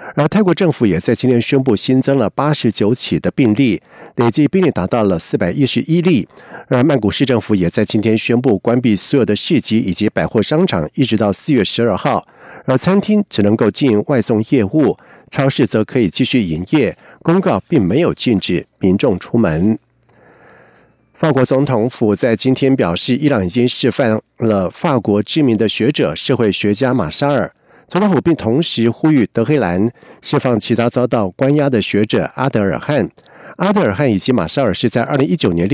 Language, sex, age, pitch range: German, male, 50-69, 110-145 Hz